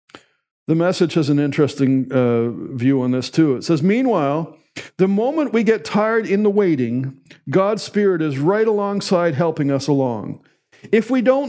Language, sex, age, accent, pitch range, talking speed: English, male, 50-69, American, 140-210 Hz, 165 wpm